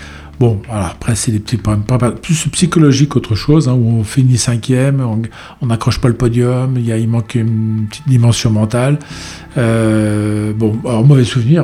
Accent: French